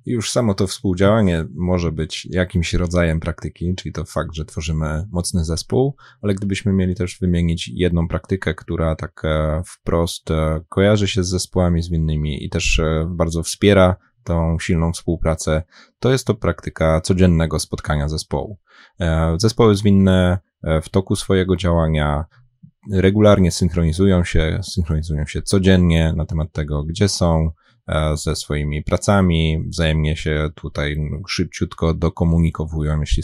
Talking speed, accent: 130 wpm, native